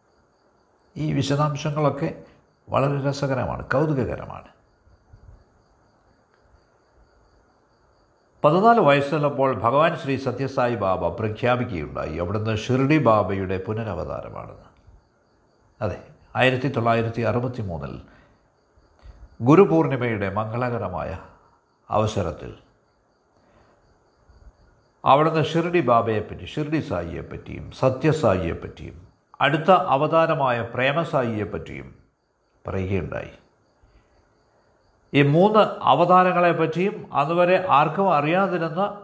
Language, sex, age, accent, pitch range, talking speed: Malayalam, male, 60-79, native, 100-155 Hz, 65 wpm